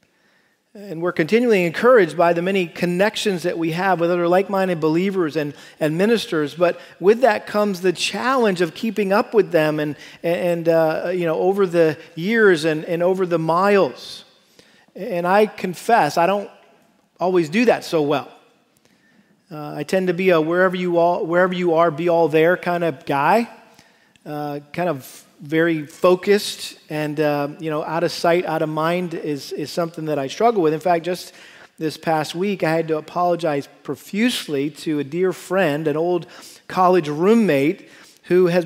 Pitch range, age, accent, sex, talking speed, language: 160-195 Hz, 40-59, American, male, 180 wpm, English